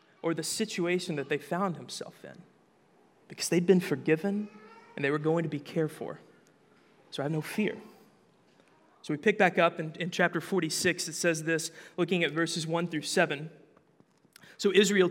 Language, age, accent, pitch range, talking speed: English, 20-39, American, 155-195 Hz, 175 wpm